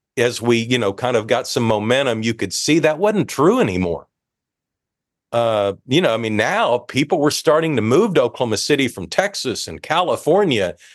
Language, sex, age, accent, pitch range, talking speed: English, male, 50-69, American, 105-135 Hz, 185 wpm